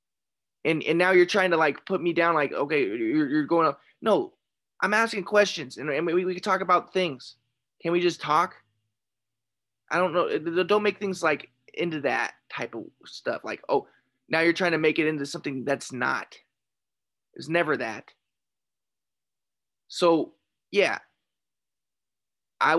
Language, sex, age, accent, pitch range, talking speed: English, male, 20-39, American, 155-185 Hz, 165 wpm